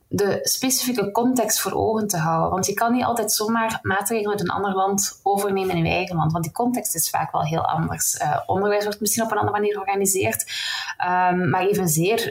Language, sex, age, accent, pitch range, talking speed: Dutch, female, 20-39, Dutch, 180-220 Hz, 210 wpm